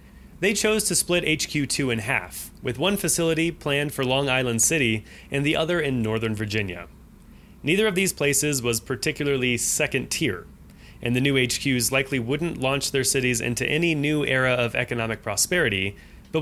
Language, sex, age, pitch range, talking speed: English, male, 30-49, 115-150 Hz, 170 wpm